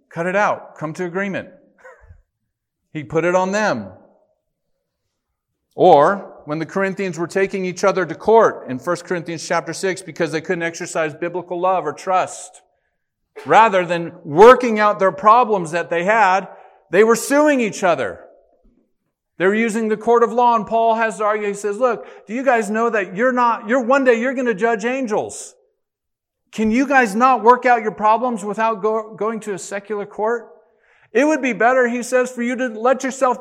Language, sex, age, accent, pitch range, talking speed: English, male, 40-59, American, 175-240 Hz, 185 wpm